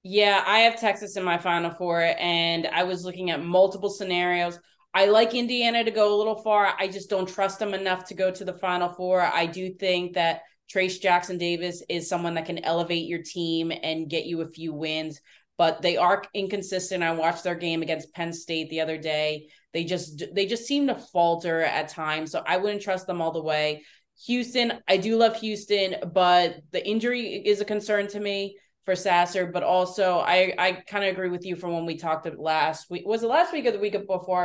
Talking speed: 215 wpm